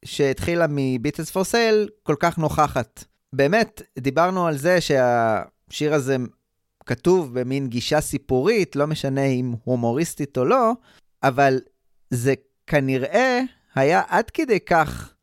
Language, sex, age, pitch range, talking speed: Hebrew, male, 20-39, 130-165 Hz, 120 wpm